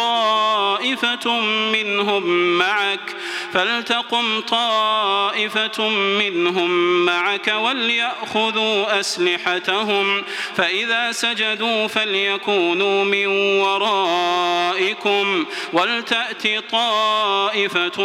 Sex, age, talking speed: male, 30-49, 55 wpm